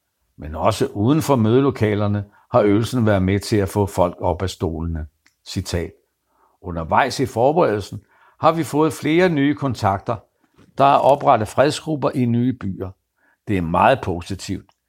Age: 60-79